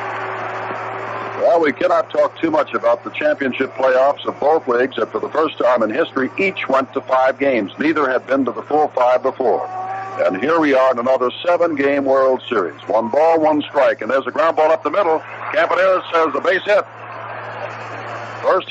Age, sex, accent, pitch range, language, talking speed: 60-79, male, American, 130-160 Hz, English, 190 wpm